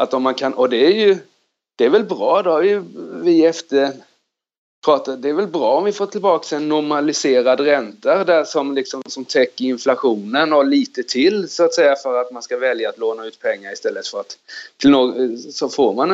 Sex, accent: male, native